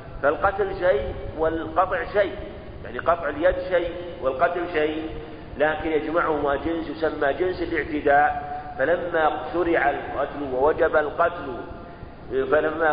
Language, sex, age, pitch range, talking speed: Arabic, male, 50-69, 145-175 Hz, 100 wpm